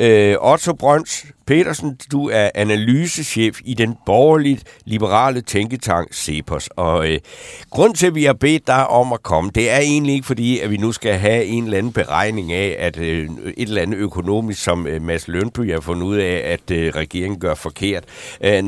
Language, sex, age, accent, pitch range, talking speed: Danish, male, 60-79, native, 105-140 Hz, 190 wpm